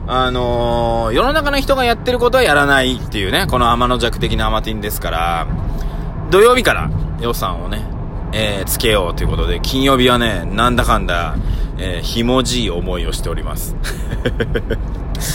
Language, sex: Japanese, male